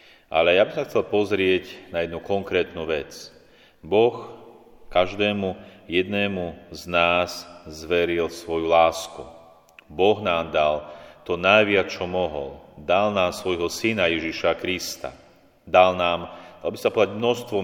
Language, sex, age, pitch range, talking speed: Slovak, male, 40-59, 85-95 Hz, 125 wpm